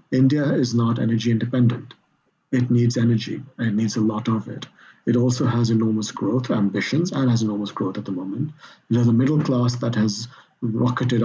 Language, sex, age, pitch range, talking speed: English, male, 50-69, 110-130 Hz, 185 wpm